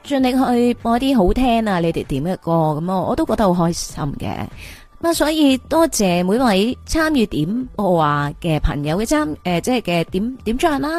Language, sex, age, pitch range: Chinese, female, 30-49, 165-235 Hz